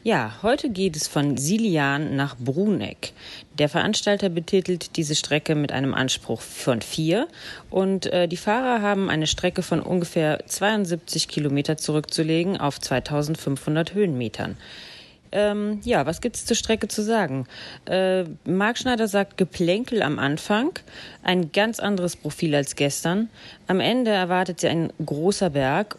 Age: 30-49